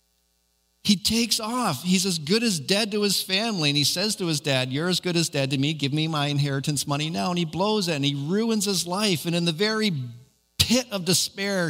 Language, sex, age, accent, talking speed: English, male, 50-69, American, 235 wpm